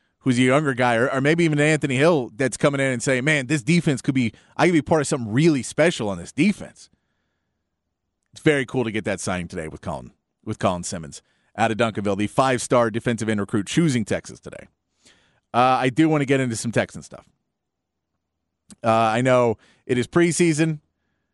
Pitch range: 110-145 Hz